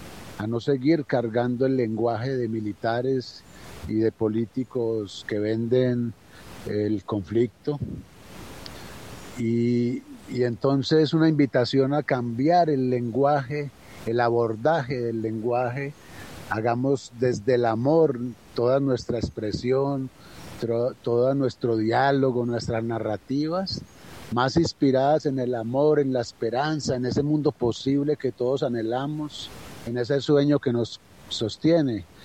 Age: 50-69